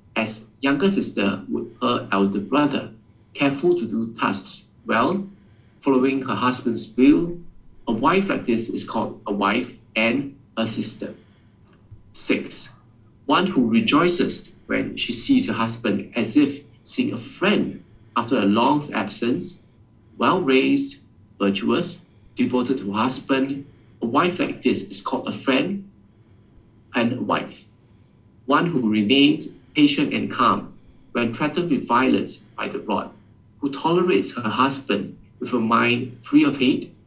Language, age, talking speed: English, 50-69, 140 wpm